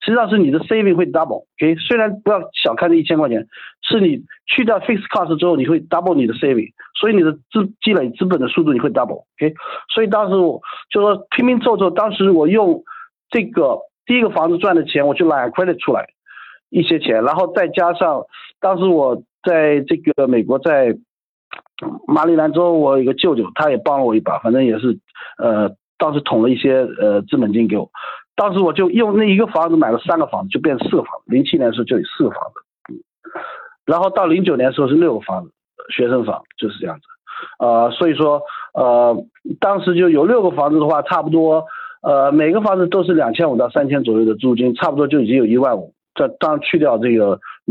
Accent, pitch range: native, 145-220 Hz